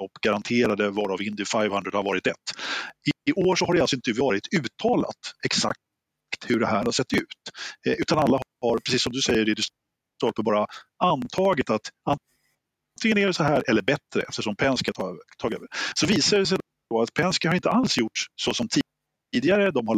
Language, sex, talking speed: Swedish, male, 190 wpm